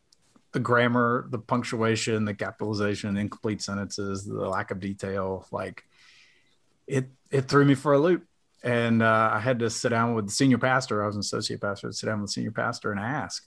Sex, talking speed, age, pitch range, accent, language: male, 195 wpm, 30-49, 110-130 Hz, American, English